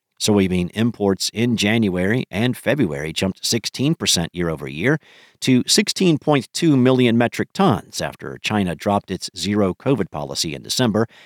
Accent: American